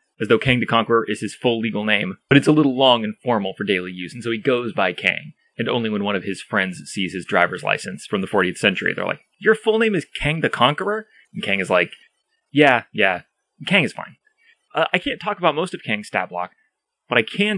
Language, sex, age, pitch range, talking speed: English, male, 30-49, 120-180 Hz, 245 wpm